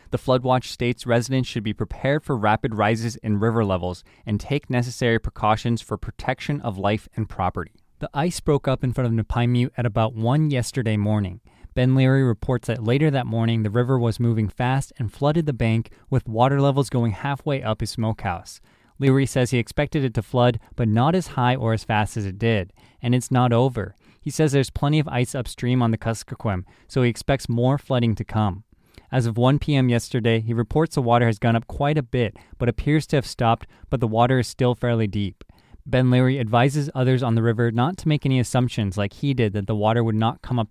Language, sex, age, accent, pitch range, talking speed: English, male, 20-39, American, 110-130 Hz, 220 wpm